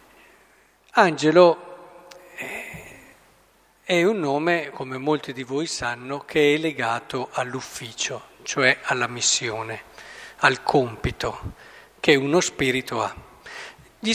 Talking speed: 100 wpm